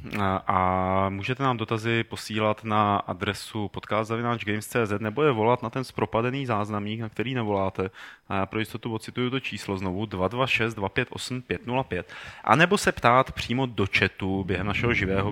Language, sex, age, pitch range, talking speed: Czech, male, 30-49, 105-130 Hz, 155 wpm